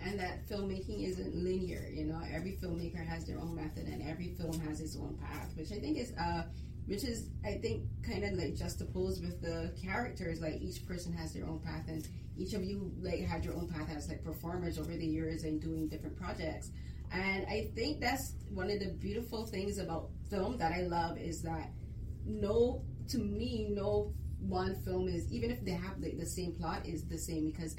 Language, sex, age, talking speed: English, female, 30-49, 210 wpm